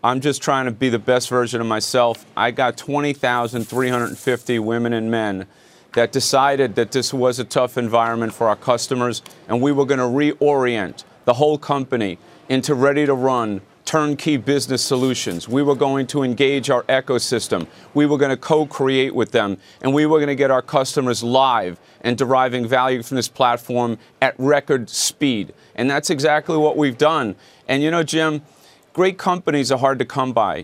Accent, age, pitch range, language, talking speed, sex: American, 40-59, 125-150 Hz, English, 175 wpm, male